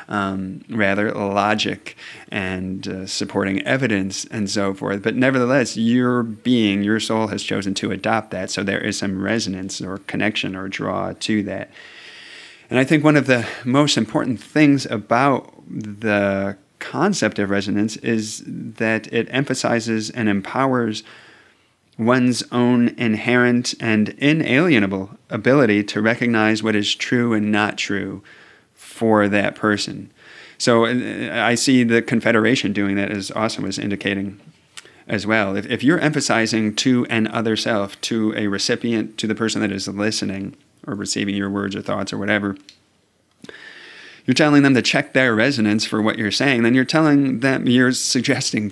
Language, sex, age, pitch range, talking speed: English, male, 30-49, 100-120 Hz, 155 wpm